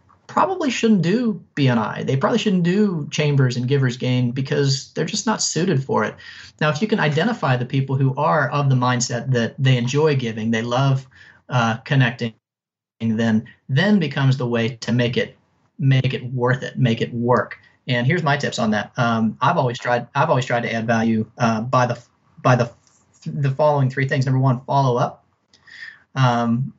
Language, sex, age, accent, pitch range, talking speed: English, male, 30-49, American, 125-155 Hz, 190 wpm